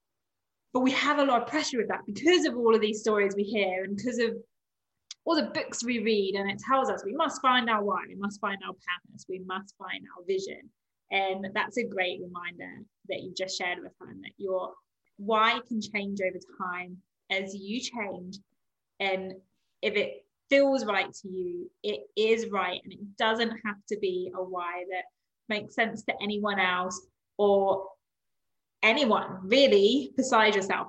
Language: English